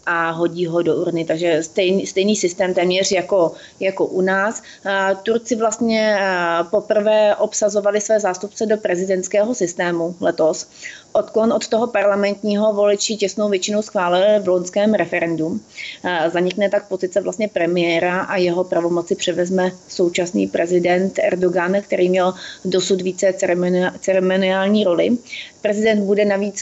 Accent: native